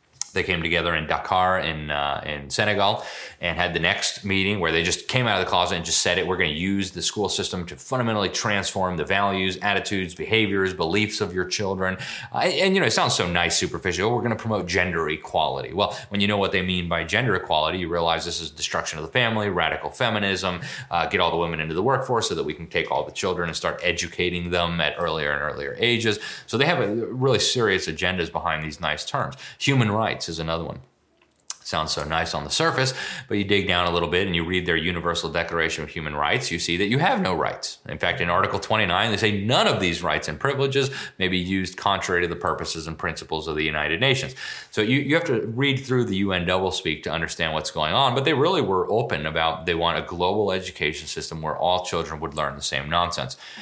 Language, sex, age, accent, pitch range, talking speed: English, male, 30-49, American, 85-105 Hz, 235 wpm